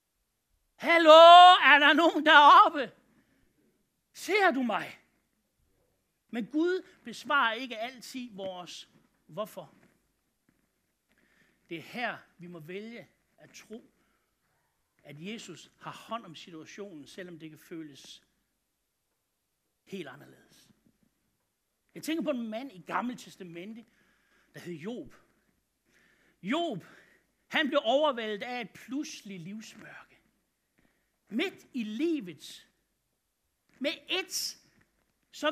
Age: 60-79